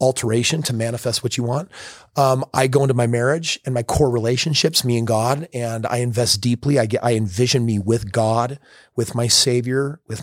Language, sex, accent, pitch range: English, male, American, 115-150 Hz